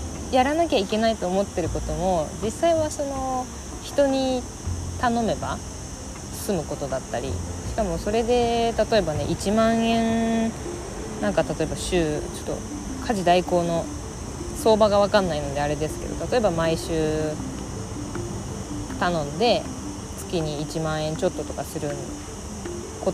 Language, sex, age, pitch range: Japanese, female, 20-39, 150-230 Hz